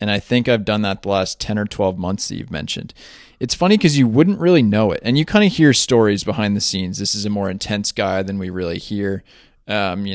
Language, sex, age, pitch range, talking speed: English, male, 20-39, 100-115 Hz, 260 wpm